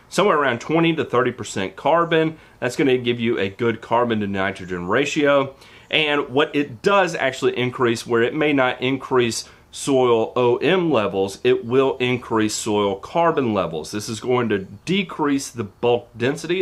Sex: male